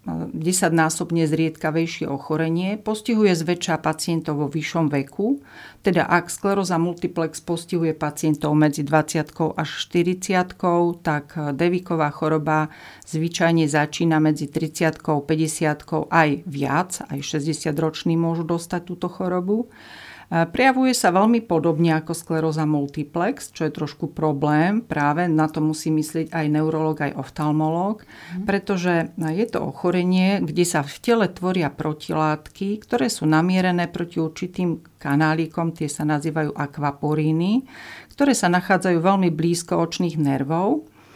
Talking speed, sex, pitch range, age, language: 120 wpm, female, 155-175 Hz, 40-59, Slovak